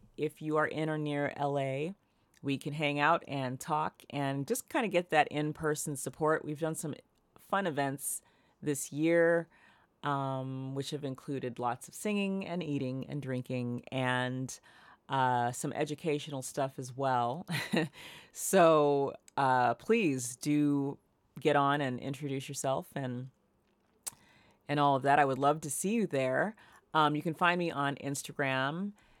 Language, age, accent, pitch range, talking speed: English, 40-59, American, 135-155 Hz, 150 wpm